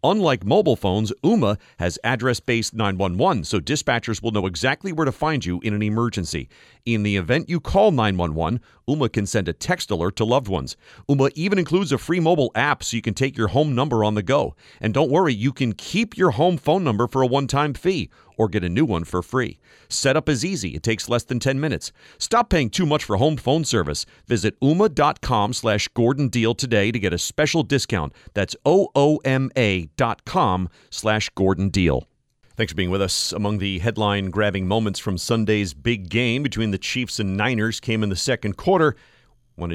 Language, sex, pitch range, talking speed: English, male, 100-135 Hz, 200 wpm